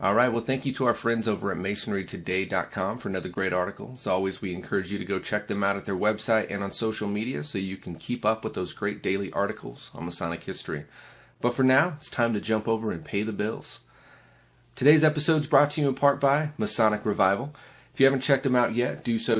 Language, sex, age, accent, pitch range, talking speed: English, male, 30-49, American, 100-130 Hz, 240 wpm